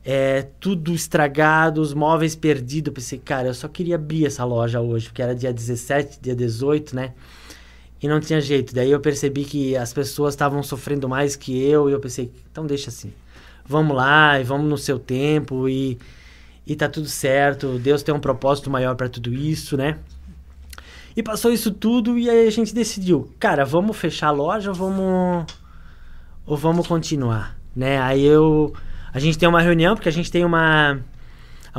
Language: Portuguese